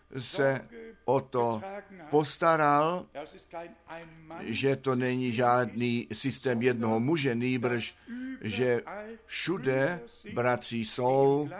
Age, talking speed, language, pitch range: 50-69, 85 wpm, Czech, 120-160 Hz